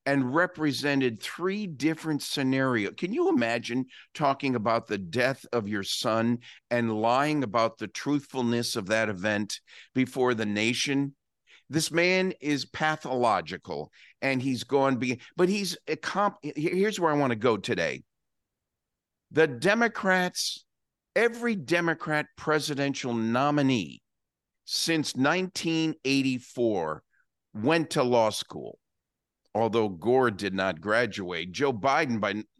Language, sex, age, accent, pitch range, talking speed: English, male, 50-69, American, 115-165 Hz, 110 wpm